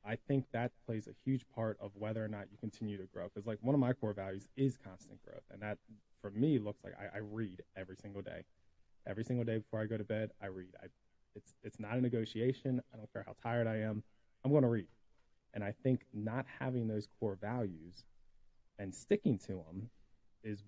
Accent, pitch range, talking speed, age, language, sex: American, 95-115 Hz, 225 wpm, 20-39, English, male